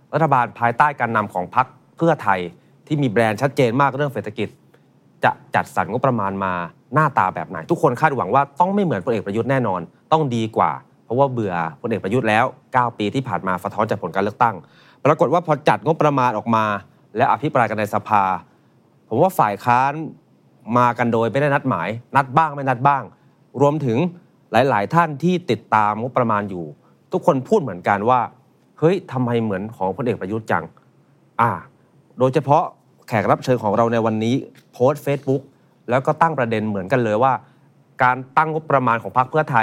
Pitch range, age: 110-140 Hz, 30-49